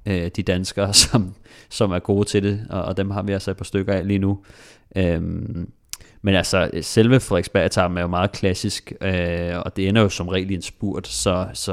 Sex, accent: male, native